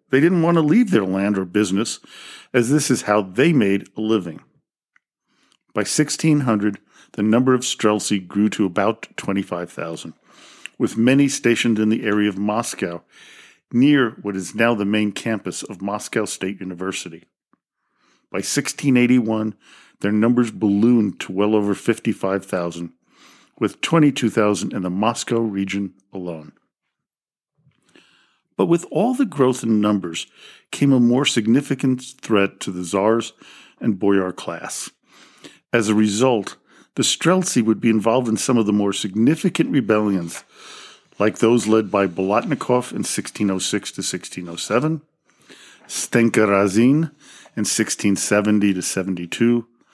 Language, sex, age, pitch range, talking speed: English, male, 50-69, 100-125 Hz, 130 wpm